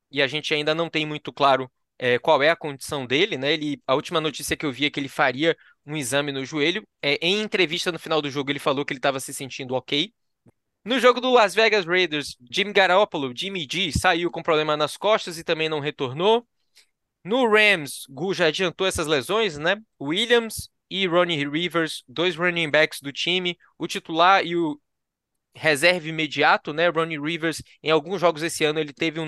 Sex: male